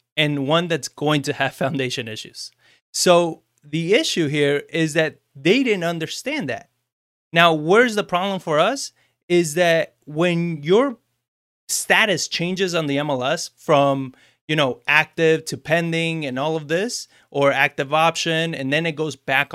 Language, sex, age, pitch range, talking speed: English, male, 30-49, 135-170 Hz, 155 wpm